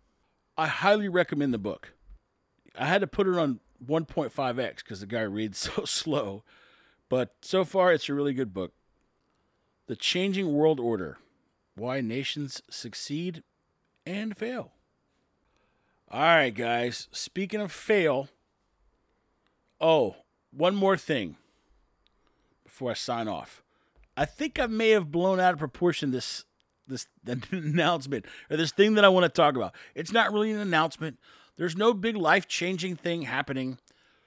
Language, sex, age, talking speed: English, male, 40-59, 145 wpm